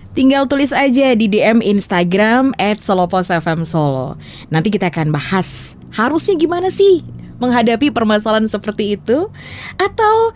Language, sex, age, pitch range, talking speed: Indonesian, female, 20-39, 180-255 Hz, 115 wpm